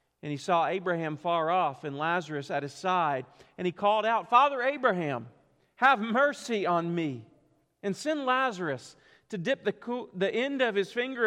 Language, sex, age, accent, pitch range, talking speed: English, male, 40-59, American, 155-220 Hz, 175 wpm